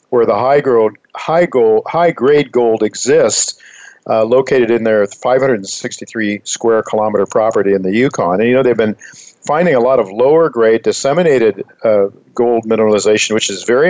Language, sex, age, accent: English, male, 50-69, American